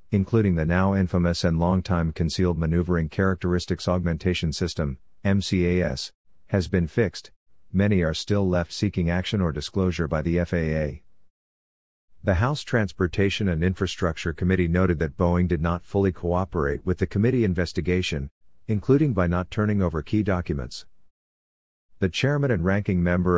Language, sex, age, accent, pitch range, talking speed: English, male, 50-69, American, 85-100 Hz, 140 wpm